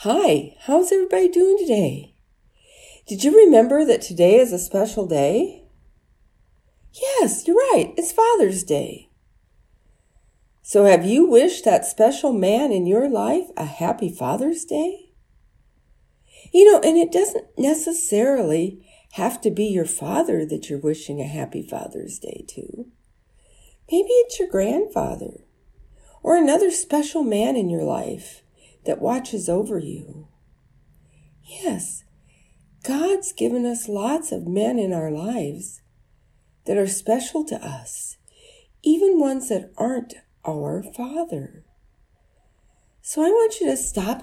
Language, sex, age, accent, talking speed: English, female, 50-69, American, 130 wpm